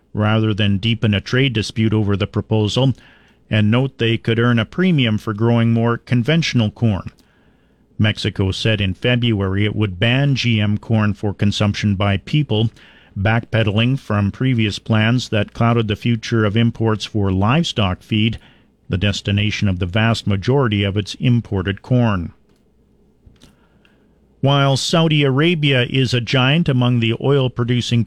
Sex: male